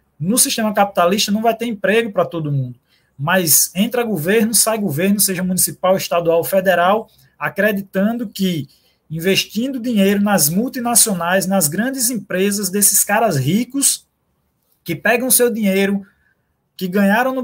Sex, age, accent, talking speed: male, 20-39, Brazilian, 130 wpm